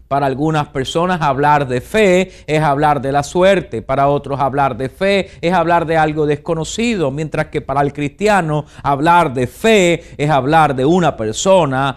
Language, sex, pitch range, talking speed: English, male, 140-180 Hz, 170 wpm